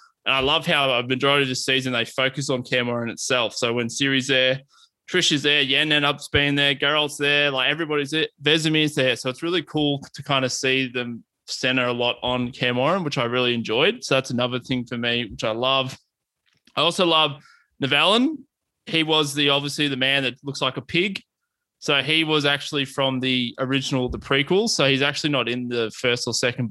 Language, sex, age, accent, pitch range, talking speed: English, male, 20-39, Australian, 125-145 Hz, 210 wpm